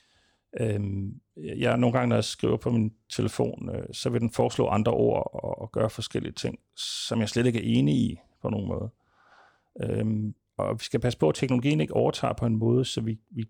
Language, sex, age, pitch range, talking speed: Danish, male, 40-59, 110-130 Hz, 195 wpm